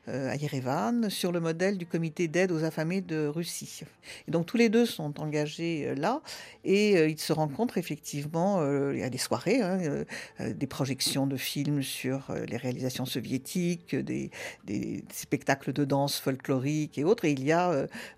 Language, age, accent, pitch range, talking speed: French, 50-69, French, 150-190 Hz, 185 wpm